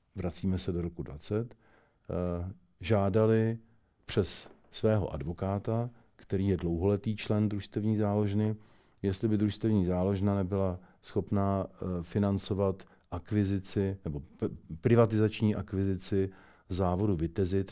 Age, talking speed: 50-69, 95 wpm